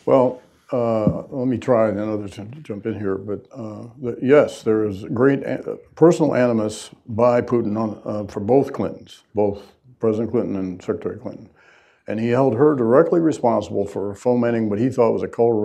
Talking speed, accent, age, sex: 185 wpm, American, 60-79, male